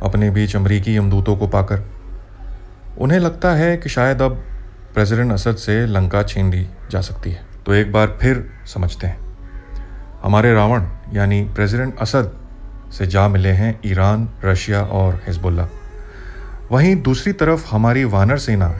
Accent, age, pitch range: native, 30-49, 95-110 Hz